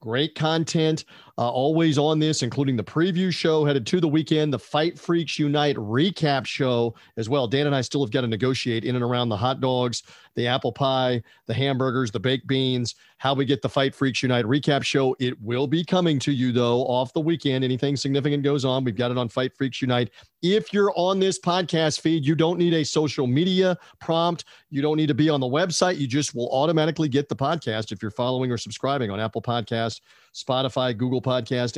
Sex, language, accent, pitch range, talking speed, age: male, English, American, 125-150 Hz, 215 wpm, 40-59